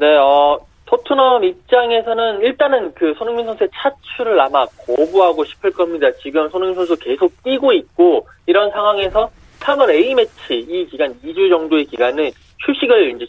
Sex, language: male, Korean